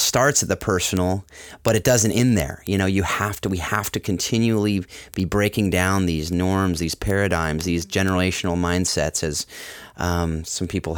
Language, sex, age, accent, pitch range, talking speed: English, male, 30-49, American, 85-100 Hz, 175 wpm